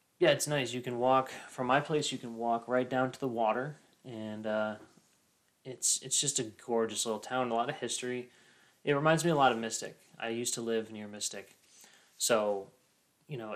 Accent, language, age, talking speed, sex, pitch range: American, English, 20-39, 205 wpm, male, 110-130 Hz